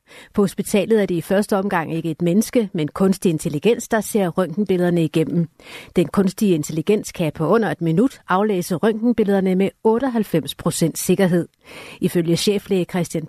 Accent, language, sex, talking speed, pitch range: native, Danish, female, 150 wpm, 170-215 Hz